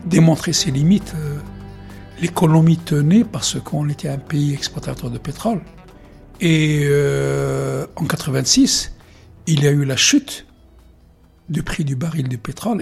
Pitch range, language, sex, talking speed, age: 130-155 Hz, French, male, 135 wpm, 60-79